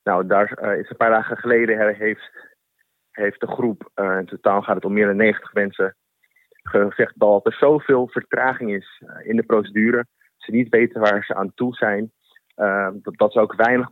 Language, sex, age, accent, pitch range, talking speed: Dutch, male, 30-49, Dutch, 105-130 Hz, 175 wpm